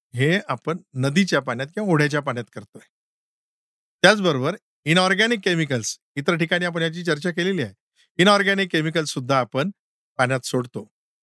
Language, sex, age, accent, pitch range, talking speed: Marathi, male, 50-69, native, 135-185 Hz, 80 wpm